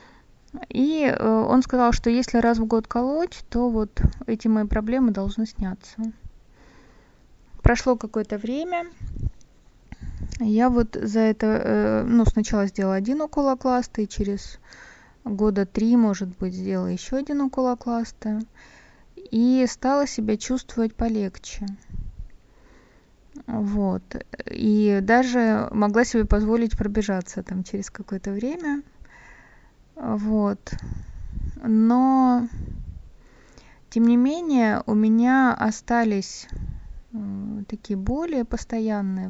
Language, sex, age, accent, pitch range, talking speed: Russian, female, 20-39, native, 205-245 Hz, 100 wpm